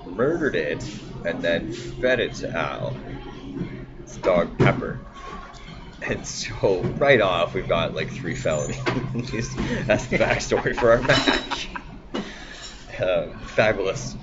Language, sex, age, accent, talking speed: English, male, 20-39, American, 115 wpm